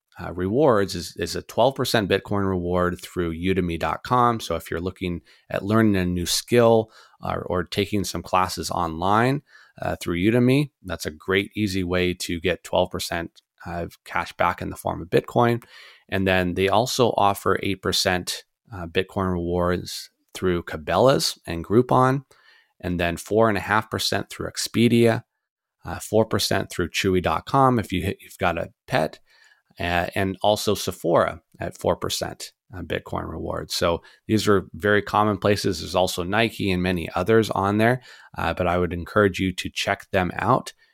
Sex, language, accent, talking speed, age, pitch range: male, English, American, 155 wpm, 30-49, 90-110 Hz